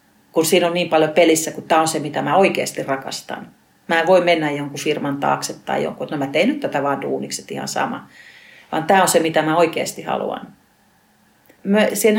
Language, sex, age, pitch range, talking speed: Finnish, female, 40-59, 155-200 Hz, 205 wpm